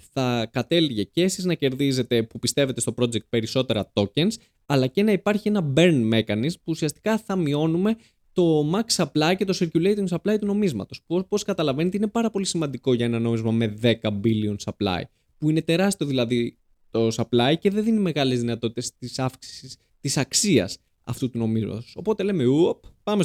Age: 20-39